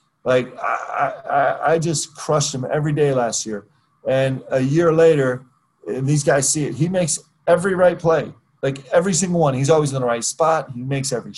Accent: American